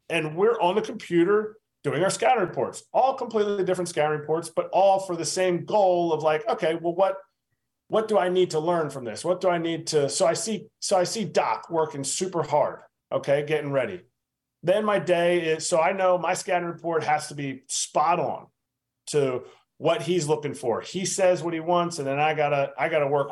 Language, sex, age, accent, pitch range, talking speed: English, male, 40-59, American, 155-195 Hz, 215 wpm